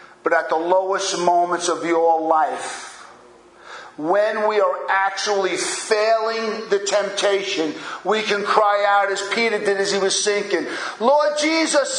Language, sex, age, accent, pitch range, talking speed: English, male, 50-69, American, 165-225 Hz, 140 wpm